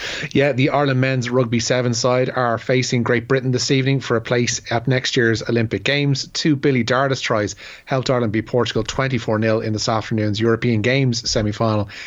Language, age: English, 30-49